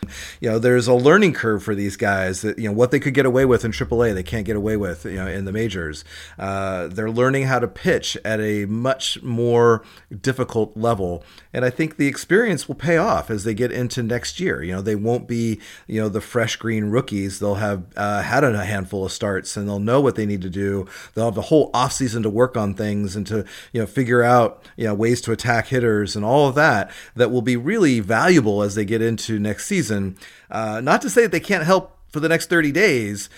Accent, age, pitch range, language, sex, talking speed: American, 40-59, 100-125 Hz, English, male, 240 wpm